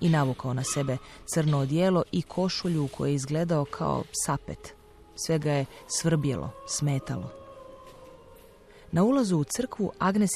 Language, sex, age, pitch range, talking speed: Croatian, female, 30-49, 140-170 Hz, 135 wpm